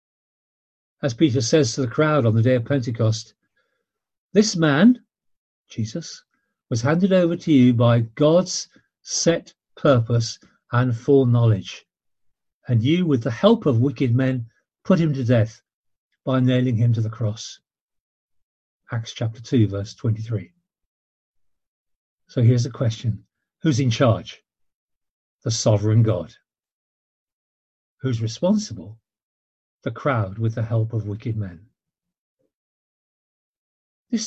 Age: 50-69